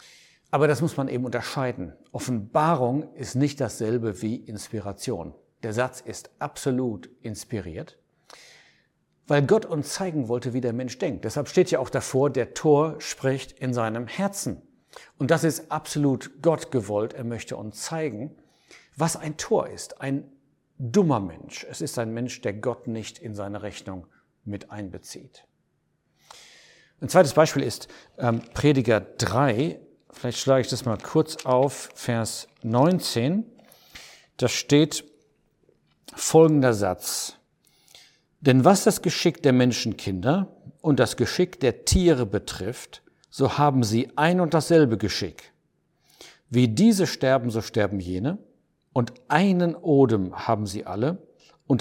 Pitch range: 115-155 Hz